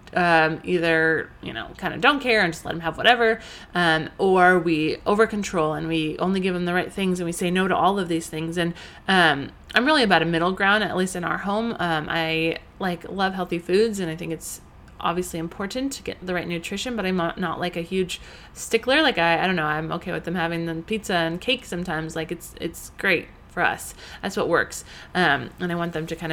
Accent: American